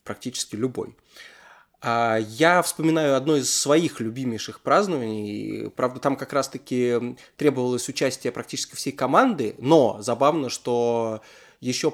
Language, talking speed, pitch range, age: Russian, 110 wpm, 115-140 Hz, 20-39